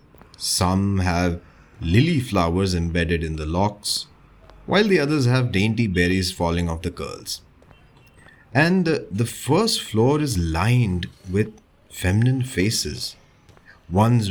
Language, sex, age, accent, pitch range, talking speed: English, male, 30-49, Indian, 90-120 Hz, 115 wpm